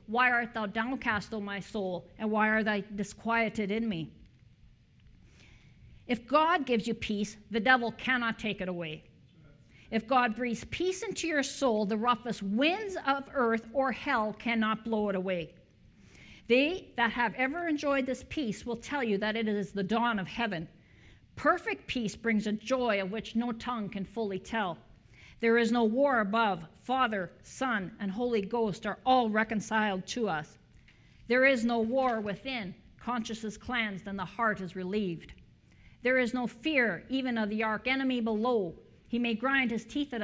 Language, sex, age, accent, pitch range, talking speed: English, female, 50-69, American, 200-250 Hz, 170 wpm